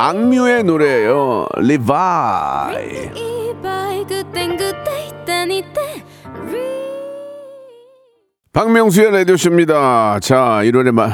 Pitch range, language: 105-170 Hz, Korean